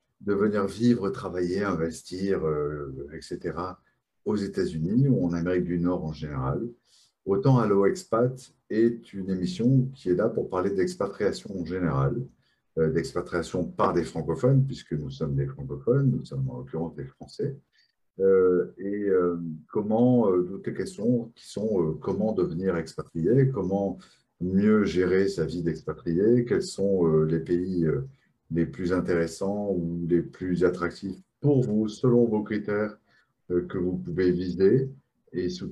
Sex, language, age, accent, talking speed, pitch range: male, French, 50-69, French, 155 wpm, 80-105 Hz